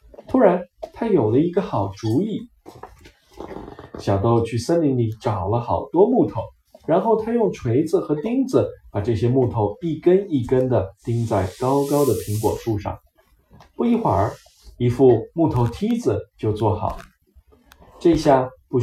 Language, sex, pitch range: Chinese, male, 105-170 Hz